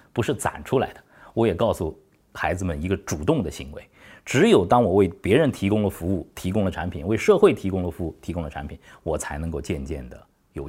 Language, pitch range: Chinese, 80-115 Hz